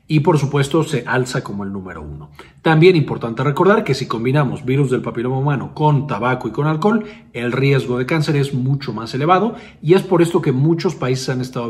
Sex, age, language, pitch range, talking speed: male, 40-59, Spanish, 120-165 Hz, 210 wpm